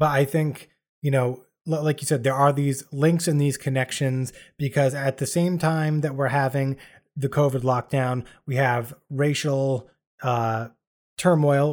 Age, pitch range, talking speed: 20-39, 130-165 Hz, 160 wpm